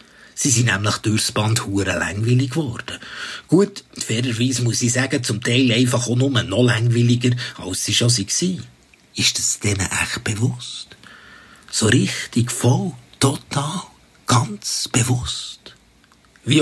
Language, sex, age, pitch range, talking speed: German, male, 50-69, 110-145 Hz, 130 wpm